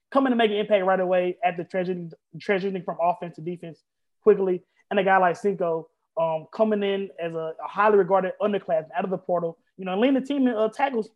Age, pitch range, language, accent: 20-39, 160-210 Hz, English, American